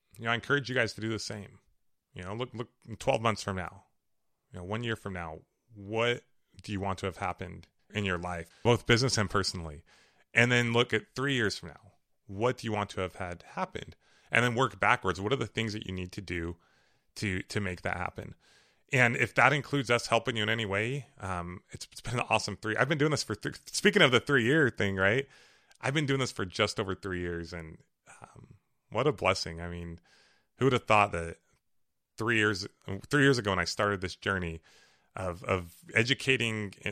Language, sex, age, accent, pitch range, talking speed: English, male, 30-49, American, 90-110 Hz, 220 wpm